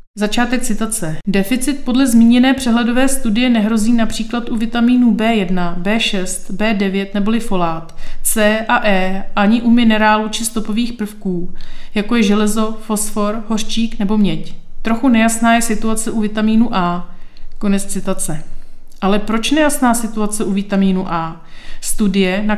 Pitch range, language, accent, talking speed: 205-240 Hz, Czech, native, 135 wpm